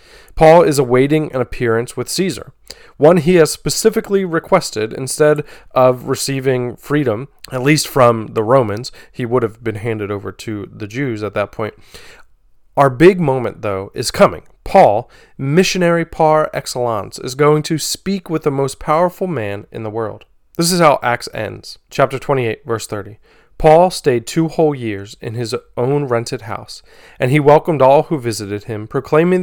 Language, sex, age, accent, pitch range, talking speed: English, male, 30-49, American, 115-150 Hz, 165 wpm